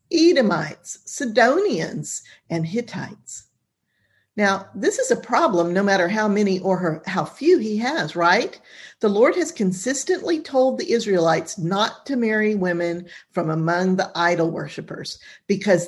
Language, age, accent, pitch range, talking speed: English, 50-69, American, 170-240 Hz, 135 wpm